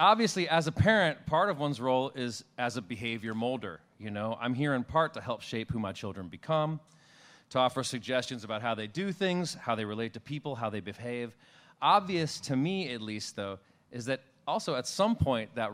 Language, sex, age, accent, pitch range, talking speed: English, male, 30-49, American, 110-145 Hz, 210 wpm